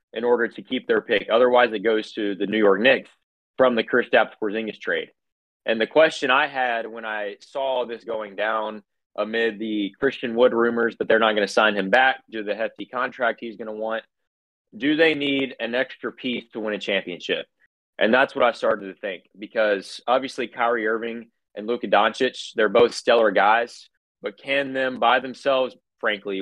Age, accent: 20-39, American